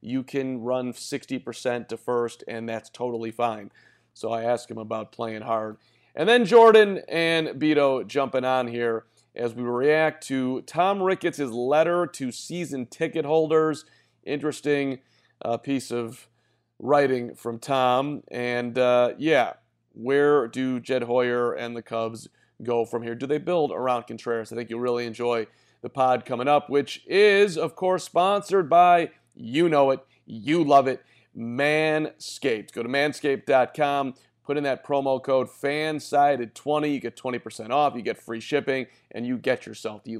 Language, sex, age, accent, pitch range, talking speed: English, male, 40-59, American, 120-145 Hz, 155 wpm